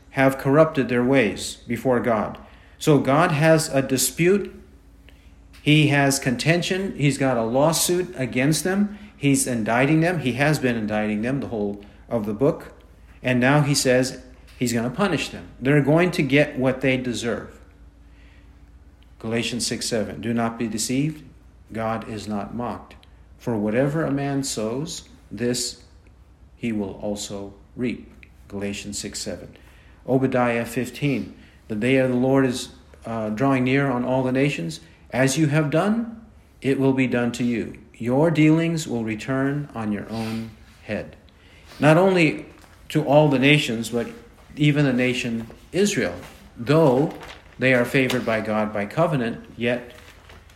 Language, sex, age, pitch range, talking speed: English, male, 50-69, 100-135 Hz, 150 wpm